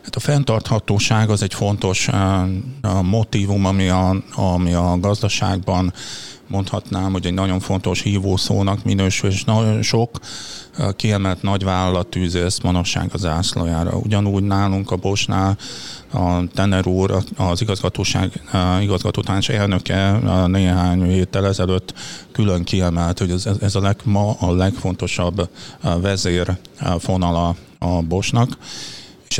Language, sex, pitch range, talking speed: Hungarian, male, 90-105 Hz, 130 wpm